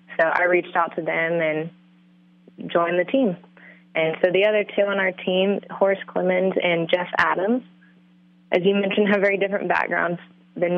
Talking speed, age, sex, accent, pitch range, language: 175 wpm, 20-39, female, American, 170-195 Hz, English